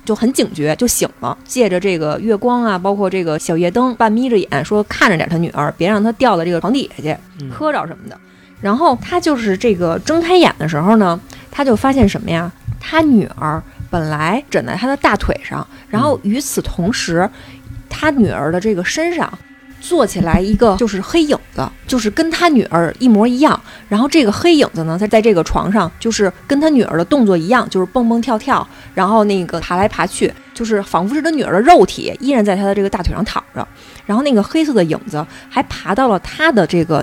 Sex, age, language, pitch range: female, 20-39, Chinese, 175-250 Hz